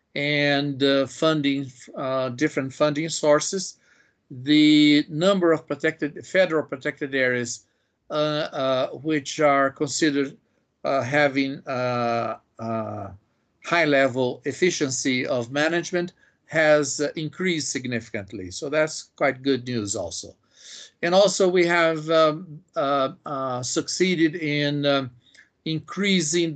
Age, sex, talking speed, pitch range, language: 50-69, male, 110 wpm, 130-160 Hz, Portuguese